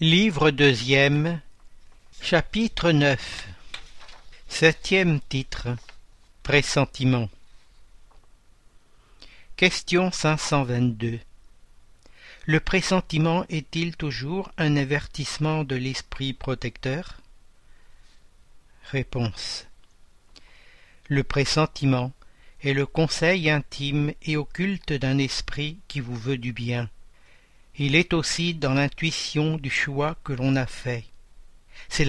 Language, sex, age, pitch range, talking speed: French, male, 60-79, 125-155 Hz, 90 wpm